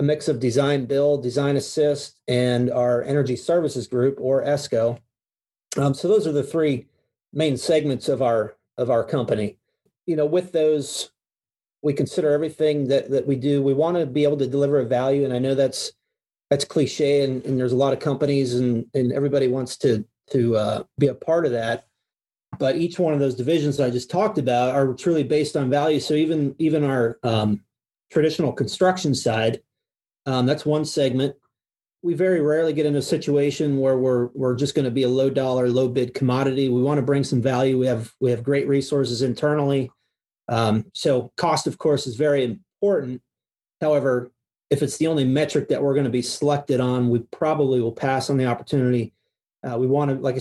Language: English